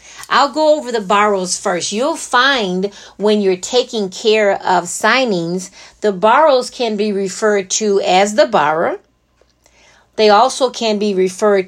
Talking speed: 145 wpm